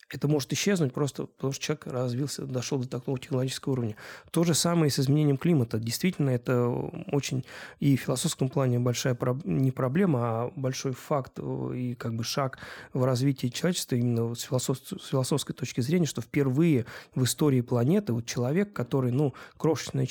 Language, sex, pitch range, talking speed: Russian, male, 120-140 Hz, 175 wpm